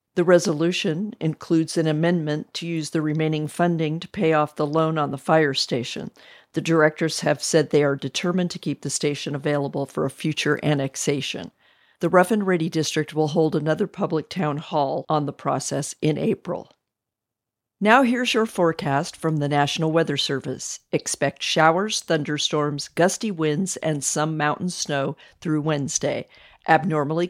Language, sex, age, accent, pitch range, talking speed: English, female, 50-69, American, 145-175 Hz, 160 wpm